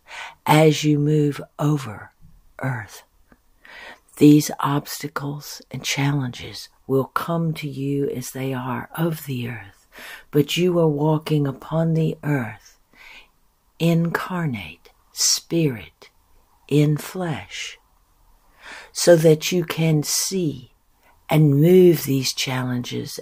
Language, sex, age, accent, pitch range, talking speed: English, female, 60-79, American, 130-160 Hz, 100 wpm